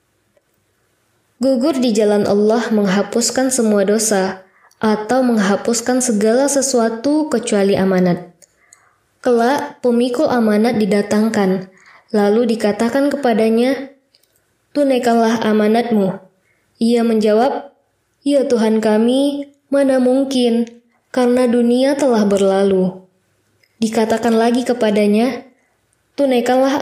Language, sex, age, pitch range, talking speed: Indonesian, female, 20-39, 205-255 Hz, 85 wpm